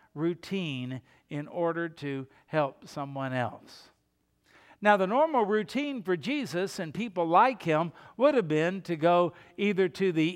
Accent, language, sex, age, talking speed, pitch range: American, English, male, 60-79, 145 wpm, 155-210 Hz